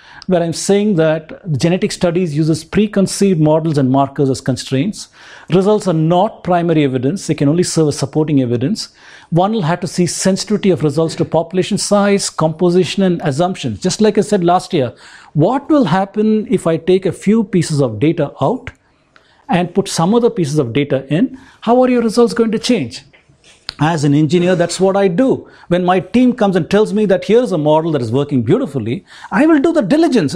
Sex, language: male, English